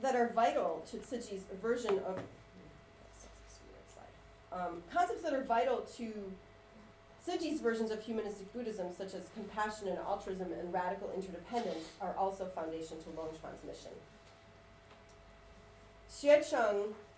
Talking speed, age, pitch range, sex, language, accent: 115 wpm, 30-49, 170-220 Hz, female, English, American